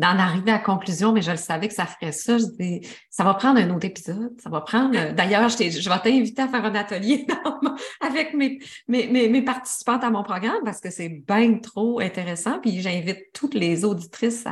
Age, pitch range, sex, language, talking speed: 30-49, 190-240 Hz, female, French, 205 wpm